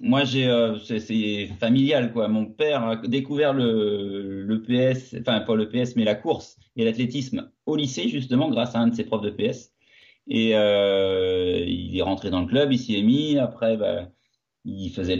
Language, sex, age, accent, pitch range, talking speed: French, male, 30-49, French, 105-130 Hz, 195 wpm